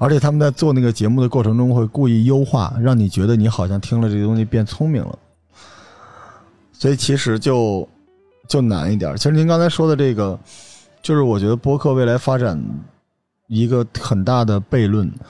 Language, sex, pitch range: Chinese, male, 100-135 Hz